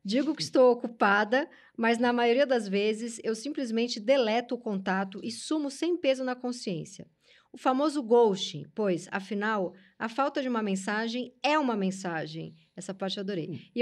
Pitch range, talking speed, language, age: 195-270 Hz, 165 wpm, Portuguese, 10-29